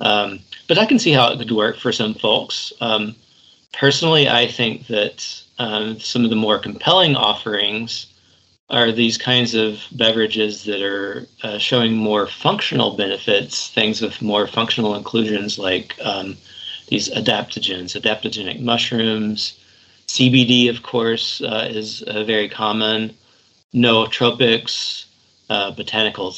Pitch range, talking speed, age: 105-115 Hz, 130 wpm, 40-59